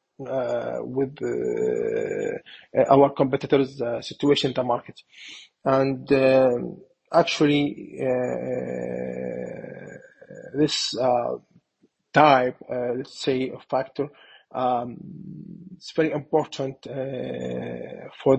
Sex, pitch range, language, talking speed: male, 130-165 Hz, English, 90 wpm